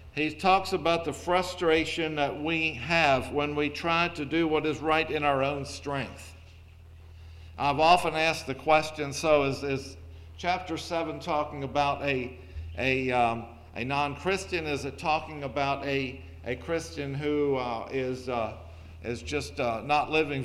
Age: 50-69